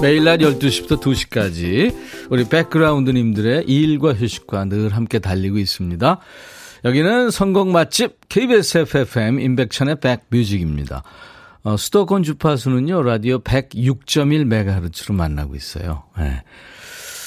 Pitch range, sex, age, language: 100-155 Hz, male, 40-59, Korean